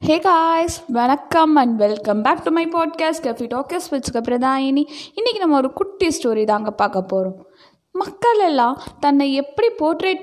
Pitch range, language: 235-330 Hz, Tamil